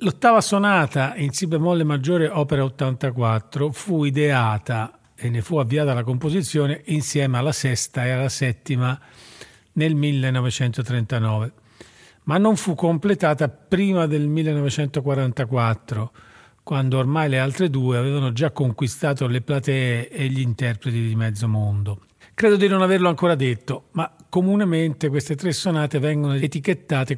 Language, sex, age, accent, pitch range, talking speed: Italian, male, 40-59, native, 125-160 Hz, 130 wpm